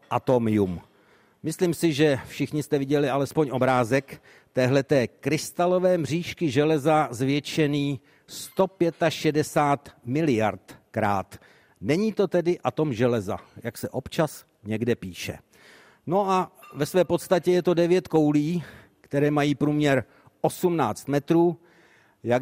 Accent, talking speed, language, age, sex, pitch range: native, 110 wpm, Czech, 60-79, male, 125-155 Hz